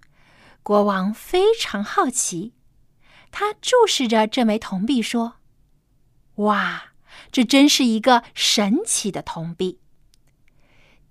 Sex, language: female, Chinese